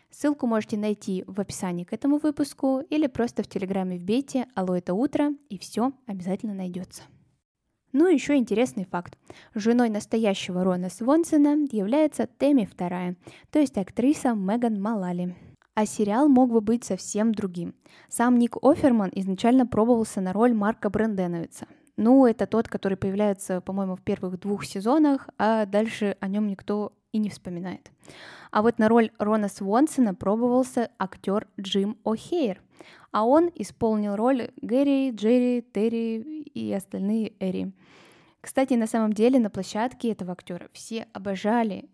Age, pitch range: 10-29, 190-245 Hz